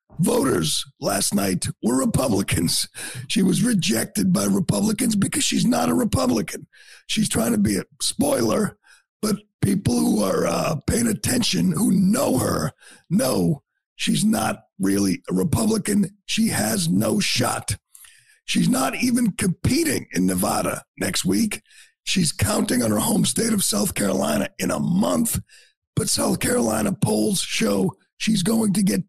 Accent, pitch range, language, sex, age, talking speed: American, 180-230 Hz, English, male, 50-69, 145 wpm